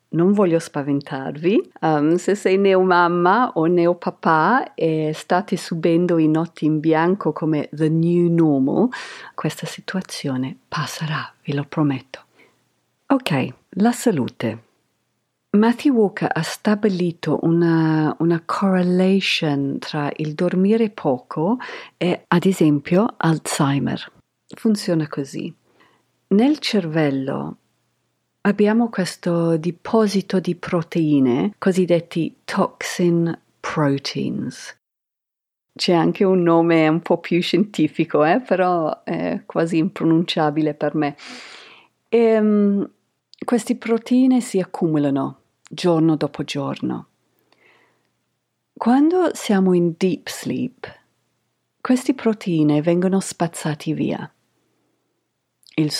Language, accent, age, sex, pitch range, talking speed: Italian, native, 50-69, female, 155-195 Hz, 100 wpm